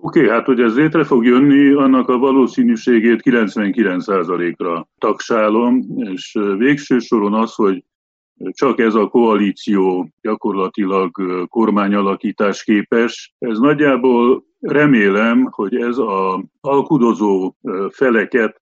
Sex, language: male, Hungarian